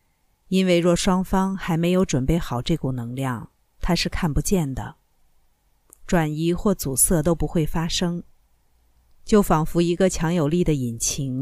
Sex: female